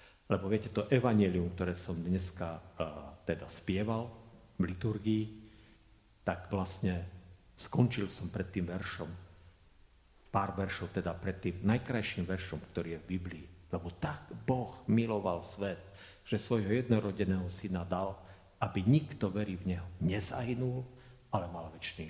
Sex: male